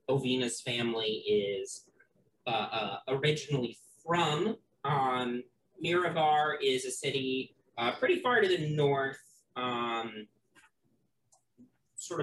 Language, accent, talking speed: English, American, 100 wpm